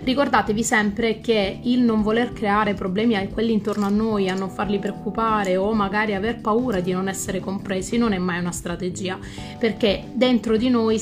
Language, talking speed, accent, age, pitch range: Italian, 185 wpm, native, 30-49, 195-230 Hz